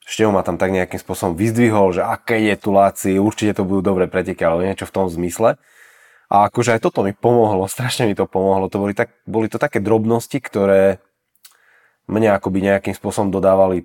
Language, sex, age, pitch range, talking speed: Slovak, male, 20-39, 90-105 Hz, 195 wpm